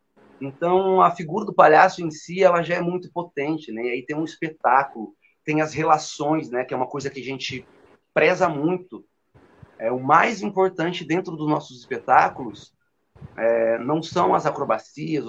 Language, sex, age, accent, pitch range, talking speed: Portuguese, male, 30-49, Brazilian, 140-170 Hz, 175 wpm